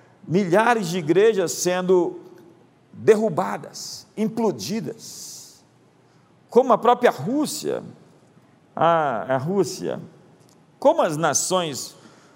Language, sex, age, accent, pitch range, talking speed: Portuguese, male, 50-69, Brazilian, 165-215 Hz, 80 wpm